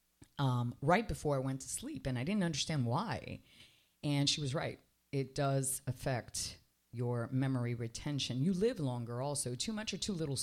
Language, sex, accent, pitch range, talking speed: English, female, American, 120-150 Hz, 180 wpm